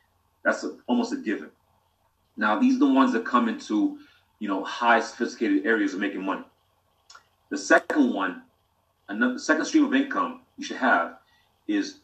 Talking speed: 165 wpm